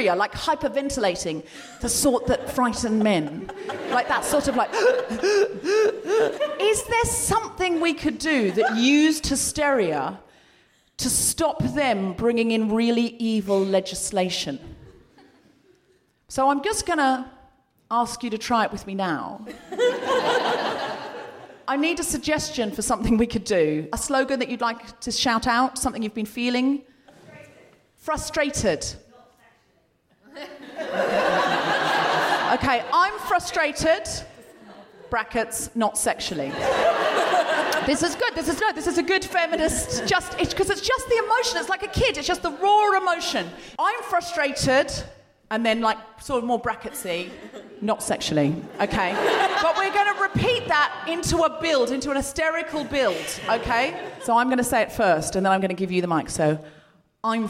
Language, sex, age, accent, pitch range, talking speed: English, female, 40-59, British, 225-340 Hz, 145 wpm